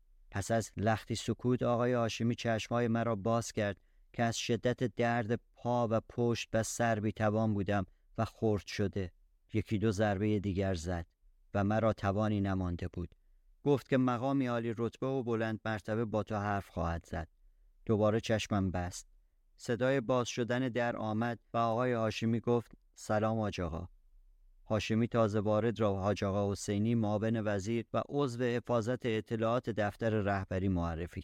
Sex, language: male, Persian